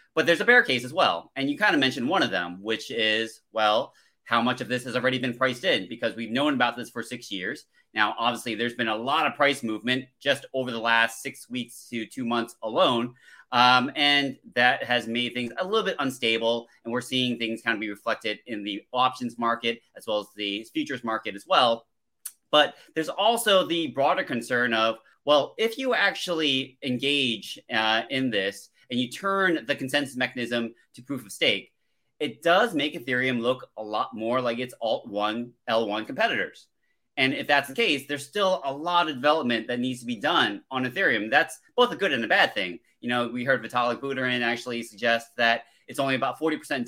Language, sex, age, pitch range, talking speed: English, male, 30-49, 115-145 Hz, 205 wpm